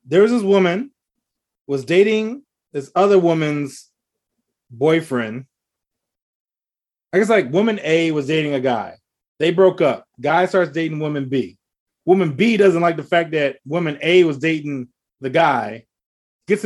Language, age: English, 20-39